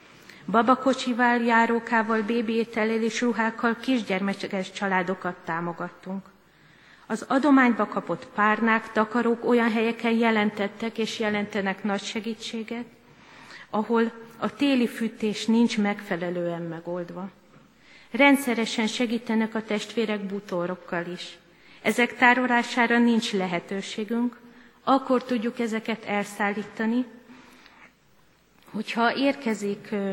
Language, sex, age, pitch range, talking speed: Hungarian, female, 30-49, 200-235 Hz, 85 wpm